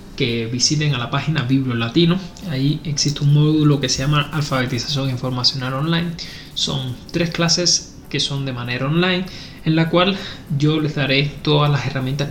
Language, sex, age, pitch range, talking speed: Spanish, male, 20-39, 130-155 Hz, 165 wpm